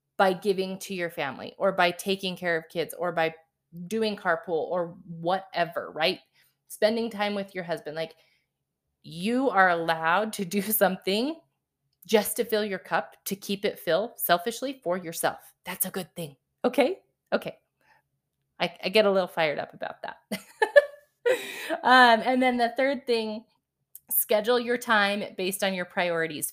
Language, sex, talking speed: English, female, 160 wpm